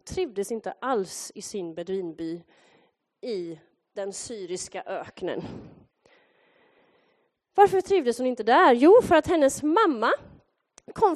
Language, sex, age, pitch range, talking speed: Swedish, female, 30-49, 215-340 Hz, 115 wpm